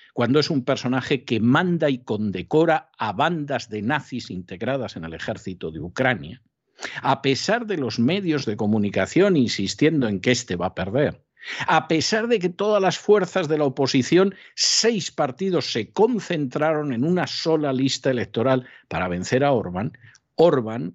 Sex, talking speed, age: male, 160 wpm, 60-79